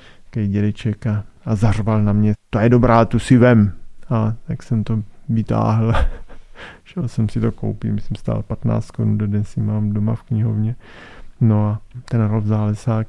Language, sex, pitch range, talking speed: Czech, male, 105-115 Hz, 180 wpm